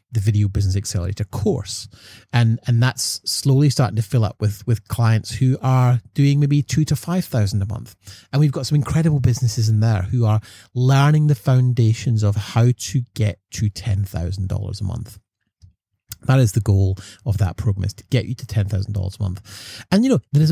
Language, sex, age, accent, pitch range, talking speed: English, male, 30-49, British, 105-125 Hz, 210 wpm